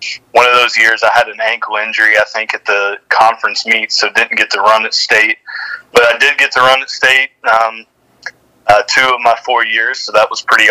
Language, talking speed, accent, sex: English, 230 wpm, American, male